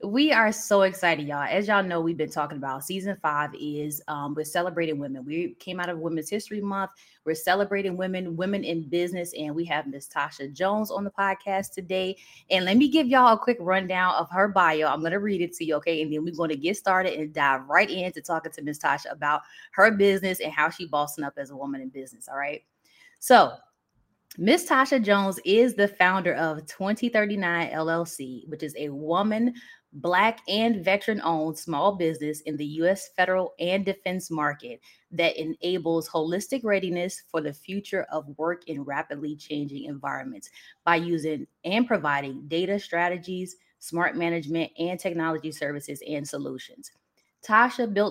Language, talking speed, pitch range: English, 180 wpm, 155-195 Hz